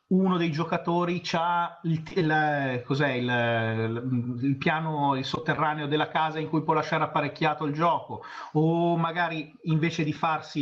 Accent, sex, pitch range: native, male, 125-160 Hz